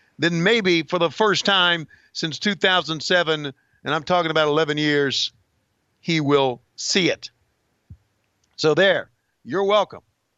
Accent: American